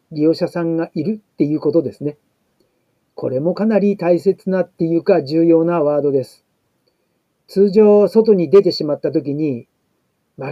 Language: Japanese